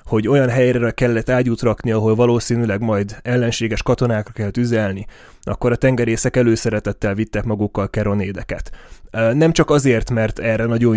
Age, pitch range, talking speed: 20-39, 105-120 Hz, 140 wpm